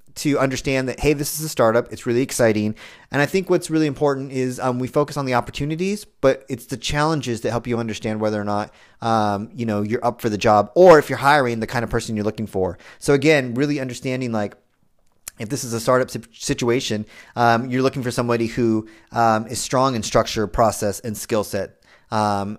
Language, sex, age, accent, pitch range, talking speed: English, male, 30-49, American, 110-135 Hz, 215 wpm